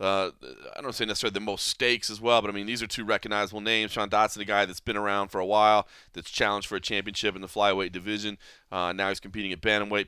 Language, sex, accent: English, male, American